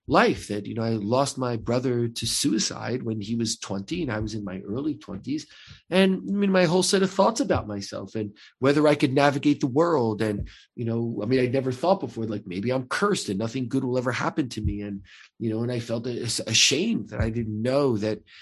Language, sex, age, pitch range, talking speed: English, male, 40-59, 110-155 Hz, 235 wpm